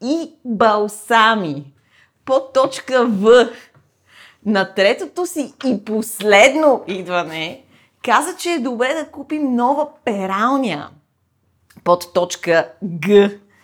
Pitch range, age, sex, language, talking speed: 175-275 Hz, 30-49, female, Bulgarian, 95 wpm